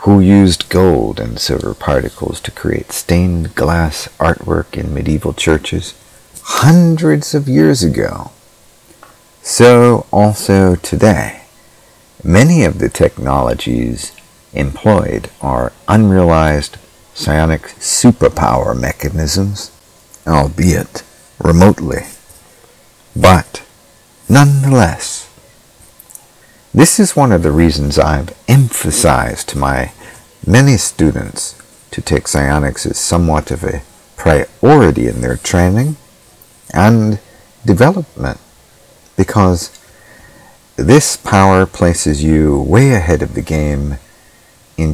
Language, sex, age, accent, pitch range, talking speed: English, male, 50-69, American, 75-105 Hz, 95 wpm